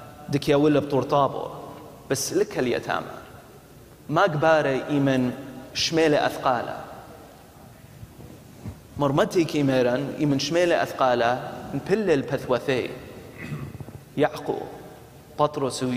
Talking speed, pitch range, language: 85 wpm, 130-155 Hz, English